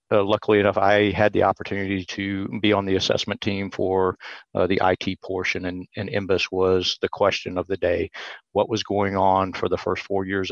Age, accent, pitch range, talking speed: 50-69, American, 95-105 Hz, 205 wpm